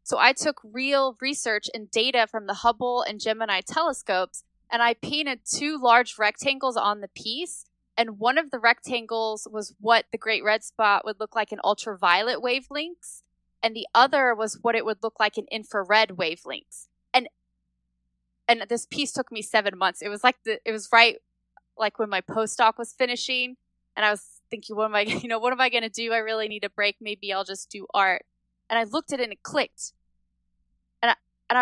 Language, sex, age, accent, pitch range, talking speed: English, female, 20-39, American, 200-255 Hz, 200 wpm